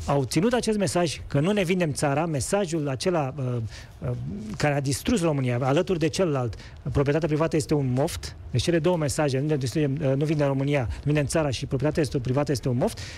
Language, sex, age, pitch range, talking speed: Romanian, male, 40-59, 140-205 Hz, 195 wpm